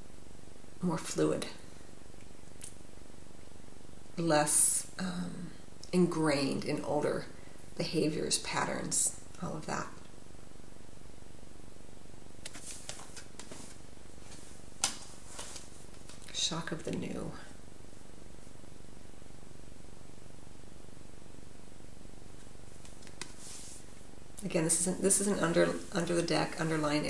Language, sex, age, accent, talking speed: English, female, 40-59, American, 60 wpm